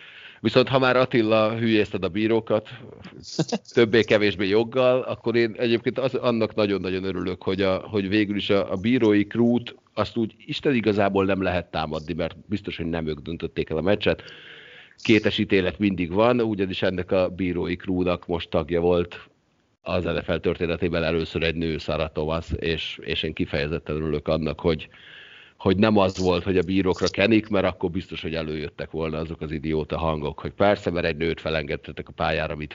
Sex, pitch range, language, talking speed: male, 80-105 Hz, Hungarian, 170 wpm